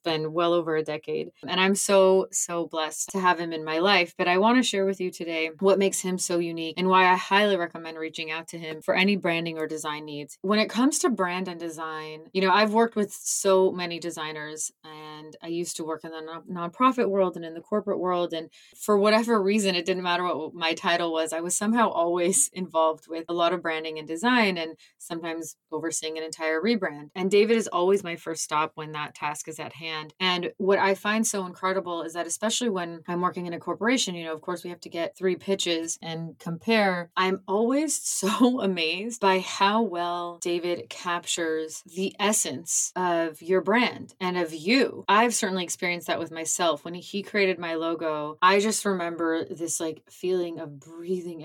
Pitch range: 165-195 Hz